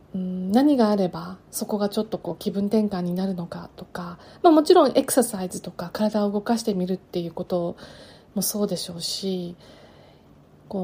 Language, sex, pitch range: Japanese, female, 175-215 Hz